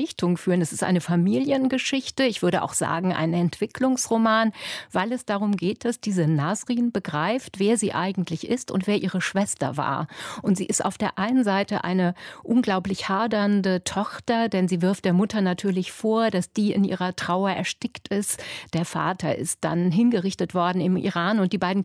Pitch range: 180-215 Hz